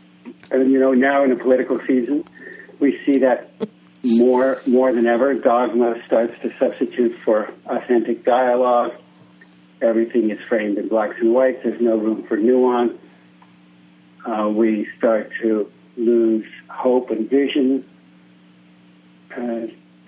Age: 60-79